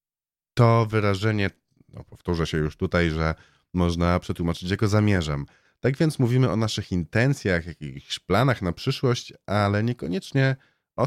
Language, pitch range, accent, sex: Polish, 80-110 Hz, native, male